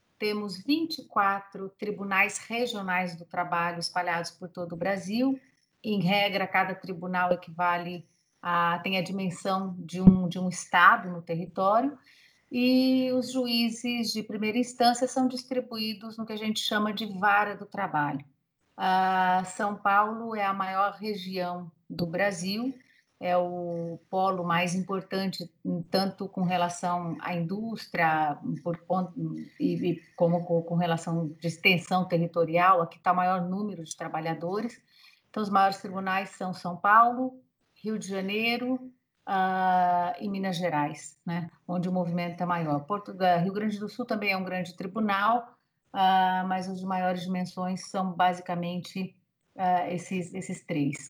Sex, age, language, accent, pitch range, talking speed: female, 40-59, Portuguese, Brazilian, 175-210 Hz, 140 wpm